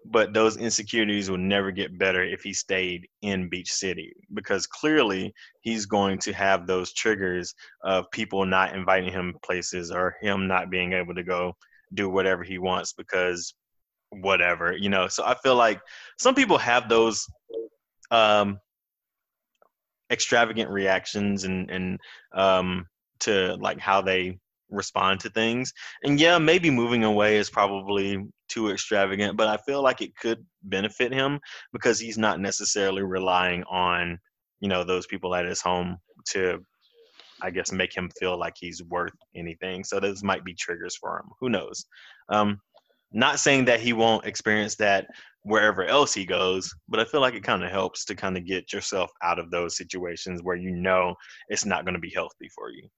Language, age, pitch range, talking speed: English, 20-39, 90-110 Hz, 170 wpm